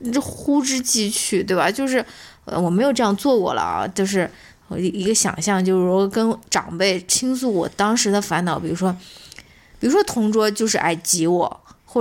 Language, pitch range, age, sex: Chinese, 180-235 Hz, 20-39, female